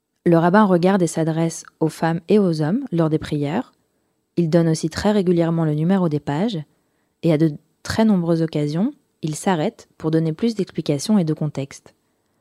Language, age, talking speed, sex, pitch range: French, 20-39, 180 wpm, female, 150-180 Hz